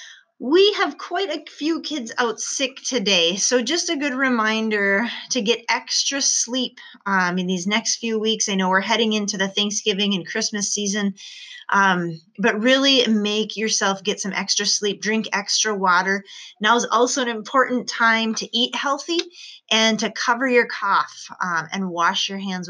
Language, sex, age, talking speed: English, female, 20-39, 170 wpm